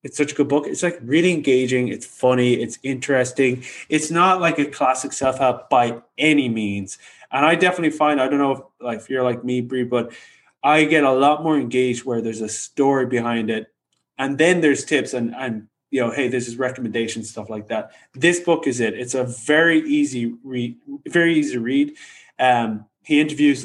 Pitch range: 120-155 Hz